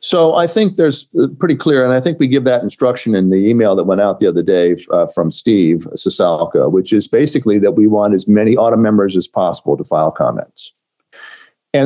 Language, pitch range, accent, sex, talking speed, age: English, 120-150 Hz, American, male, 215 wpm, 50-69